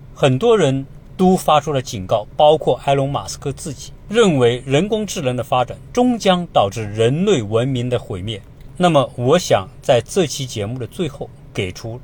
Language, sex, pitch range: Chinese, male, 125-160 Hz